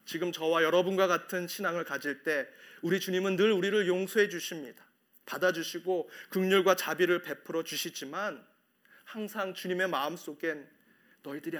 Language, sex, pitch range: Korean, male, 170-215 Hz